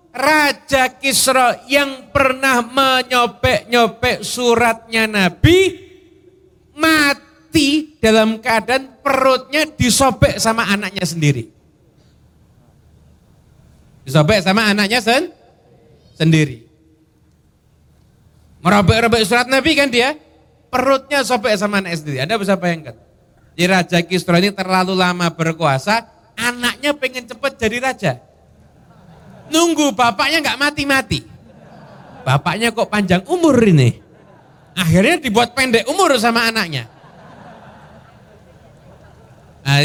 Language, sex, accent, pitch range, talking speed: Indonesian, male, native, 180-260 Hz, 95 wpm